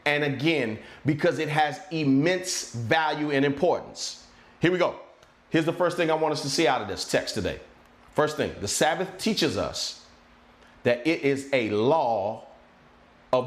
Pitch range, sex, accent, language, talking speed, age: 170-240 Hz, male, American, English, 170 wpm, 40-59